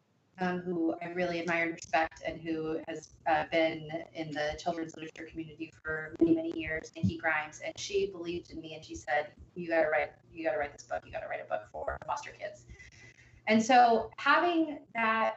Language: English